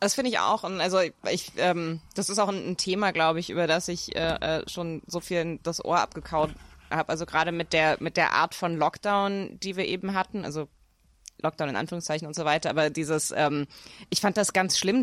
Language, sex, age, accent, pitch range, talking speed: German, female, 20-39, German, 170-215 Hz, 220 wpm